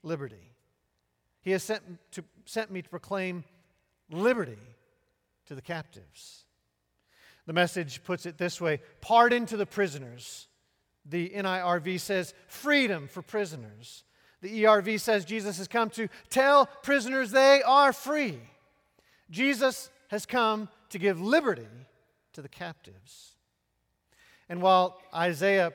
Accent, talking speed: American, 125 wpm